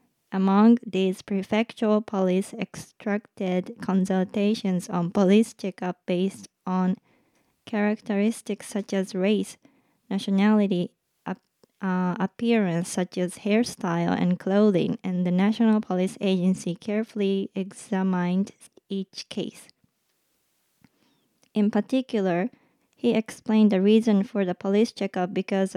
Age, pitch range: 20-39, 185-220 Hz